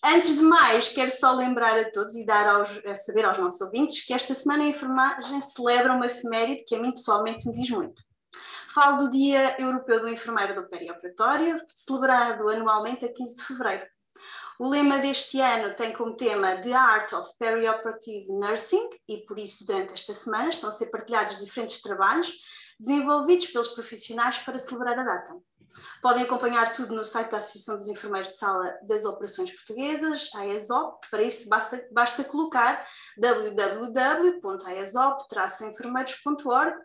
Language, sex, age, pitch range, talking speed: English, female, 20-39, 220-270 Hz, 160 wpm